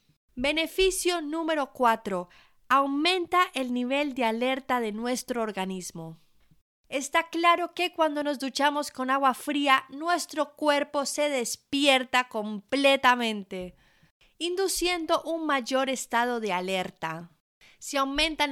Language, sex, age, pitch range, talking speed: Spanish, female, 20-39, 240-305 Hz, 105 wpm